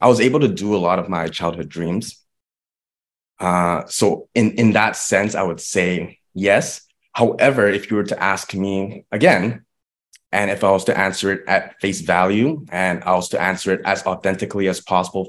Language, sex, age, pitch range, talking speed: English, male, 20-39, 90-105 Hz, 190 wpm